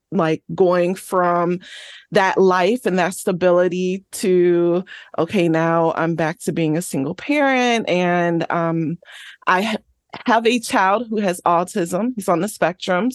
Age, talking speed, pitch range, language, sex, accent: 20-39, 140 wpm, 175-230 Hz, English, female, American